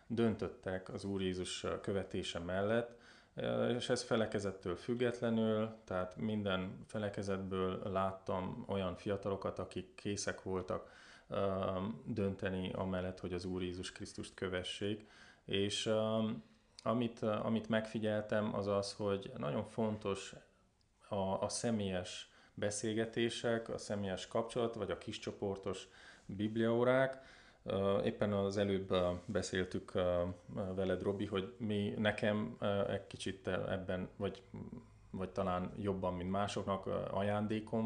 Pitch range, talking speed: 95-110 Hz, 105 wpm